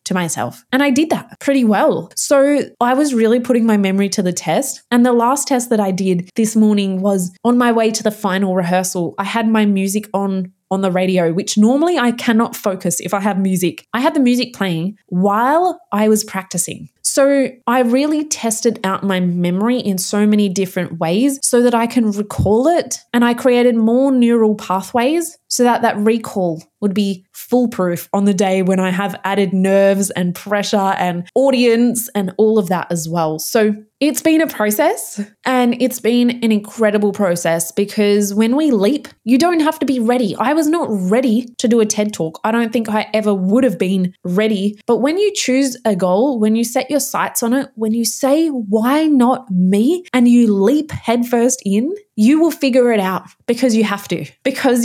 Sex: female